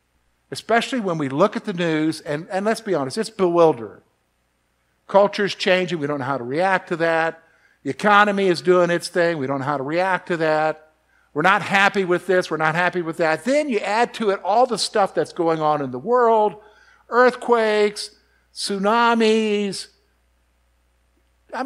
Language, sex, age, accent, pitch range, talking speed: English, male, 50-69, American, 145-215 Hz, 180 wpm